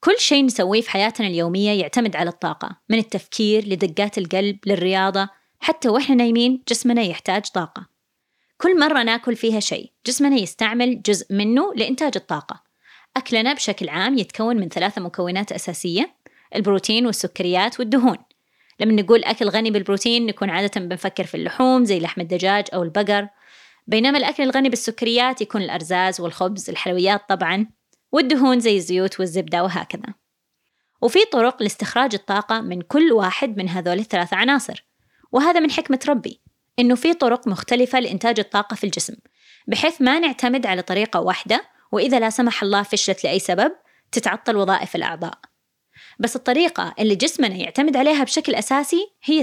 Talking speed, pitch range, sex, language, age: 145 wpm, 195-255 Hz, female, Arabic, 20-39